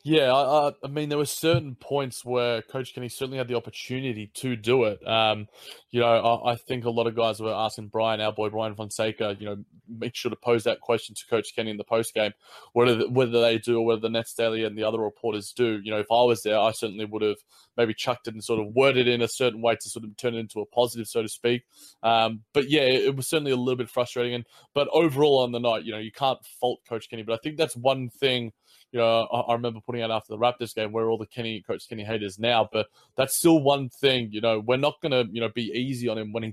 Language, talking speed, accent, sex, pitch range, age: English, 270 wpm, Australian, male, 115-130 Hz, 20-39